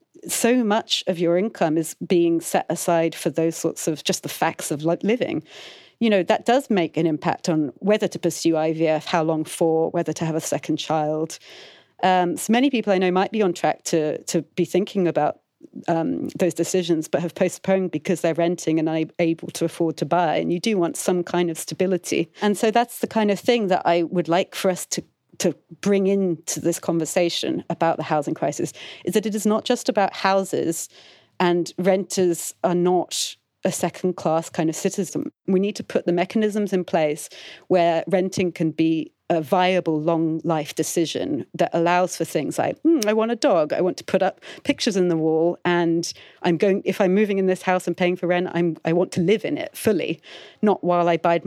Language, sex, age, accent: English, female, 40-59, British